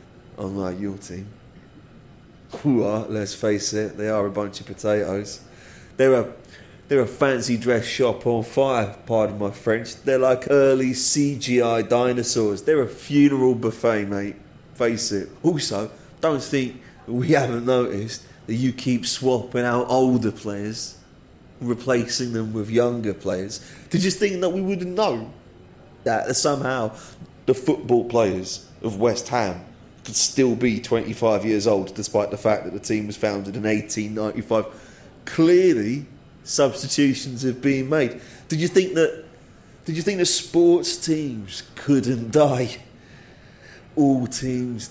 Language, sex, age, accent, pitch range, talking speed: English, male, 30-49, British, 105-135 Hz, 145 wpm